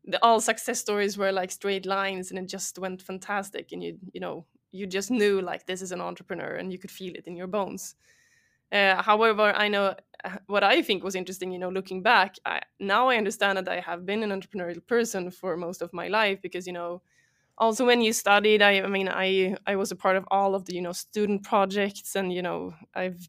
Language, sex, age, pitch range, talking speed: English, female, 20-39, 185-205 Hz, 230 wpm